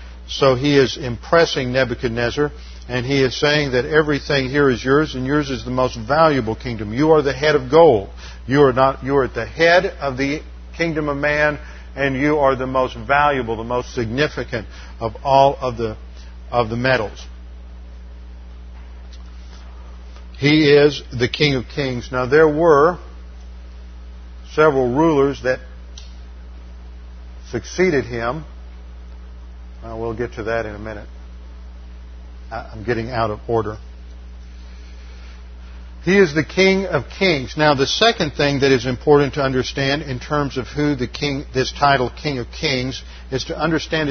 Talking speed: 150 wpm